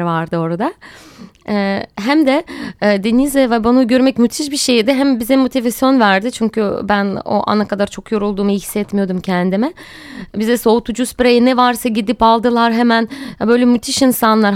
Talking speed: 155 wpm